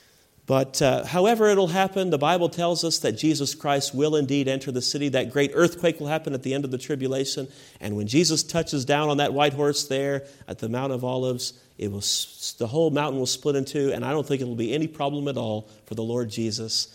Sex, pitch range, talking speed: male, 115-155 Hz, 240 wpm